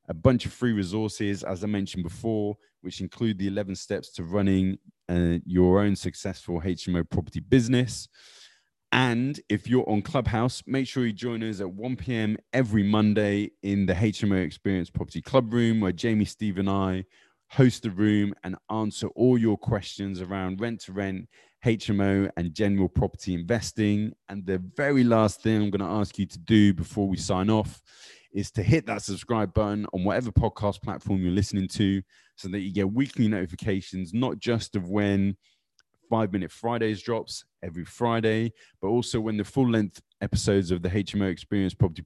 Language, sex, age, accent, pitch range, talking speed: English, male, 20-39, British, 95-110 Hz, 175 wpm